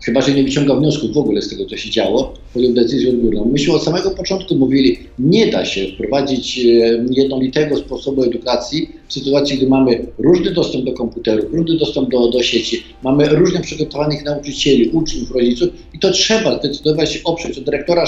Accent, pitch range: native, 130-165 Hz